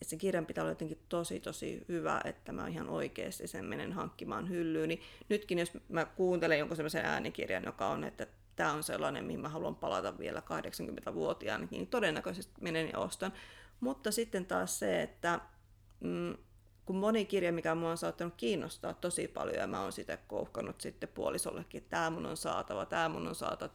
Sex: female